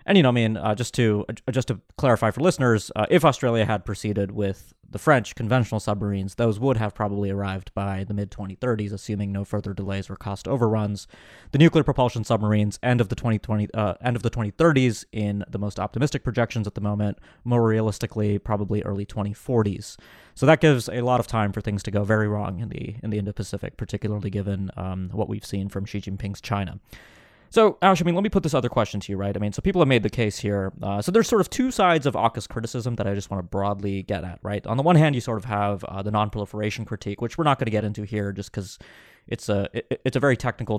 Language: English